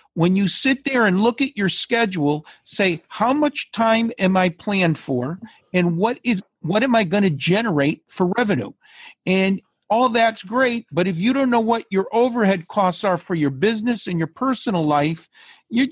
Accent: American